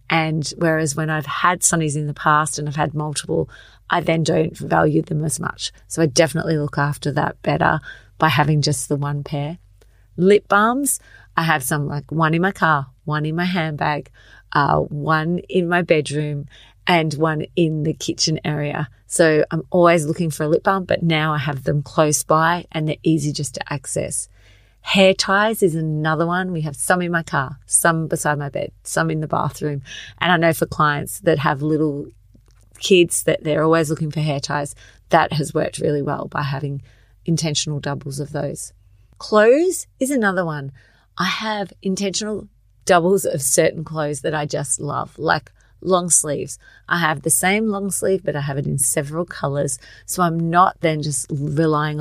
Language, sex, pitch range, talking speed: English, female, 145-170 Hz, 185 wpm